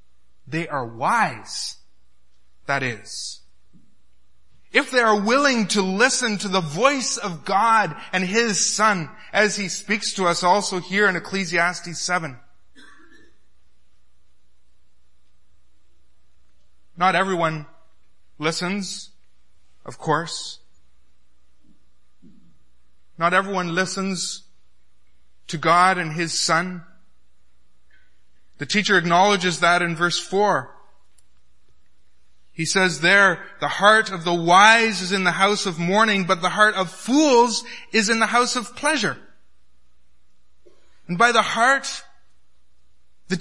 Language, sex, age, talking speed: English, male, 30-49, 110 wpm